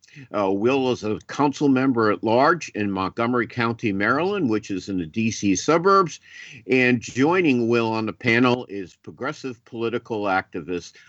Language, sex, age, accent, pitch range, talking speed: English, male, 50-69, American, 100-135 Hz, 150 wpm